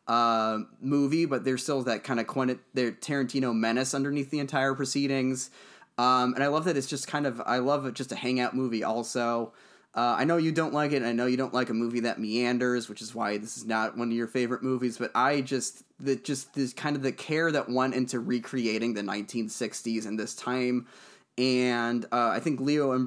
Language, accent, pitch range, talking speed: English, American, 115-135 Hz, 225 wpm